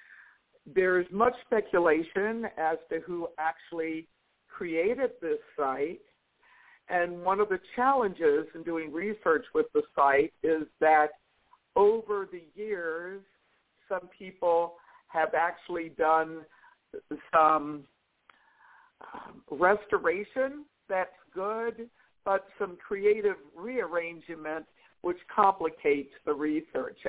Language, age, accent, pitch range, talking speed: English, 60-79, American, 155-195 Hz, 95 wpm